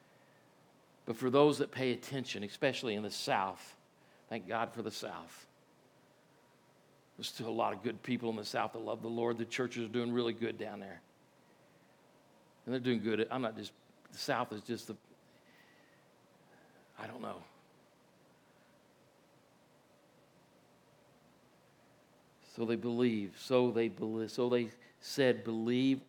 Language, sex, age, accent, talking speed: English, male, 50-69, American, 145 wpm